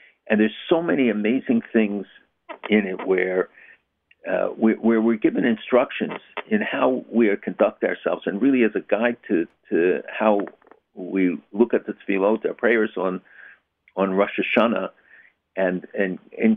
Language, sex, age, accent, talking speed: English, male, 60-79, American, 150 wpm